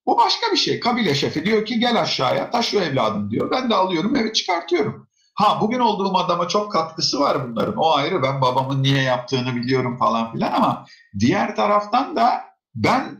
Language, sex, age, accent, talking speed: Turkish, male, 50-69, native, 180 wpm